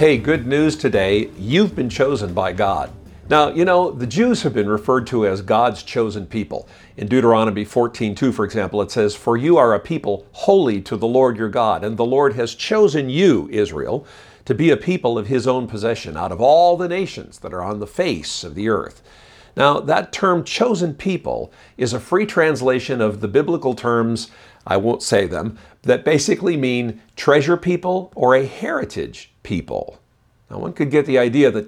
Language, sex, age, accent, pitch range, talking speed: English, male, 50-69, American, 110-155 Hz, 195 wpm